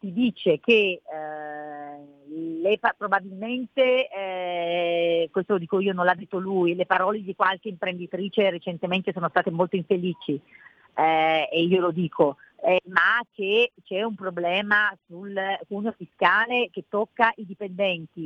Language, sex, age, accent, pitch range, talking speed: Italian, female, 40-59, native, 175-220 Hz, 140 wpm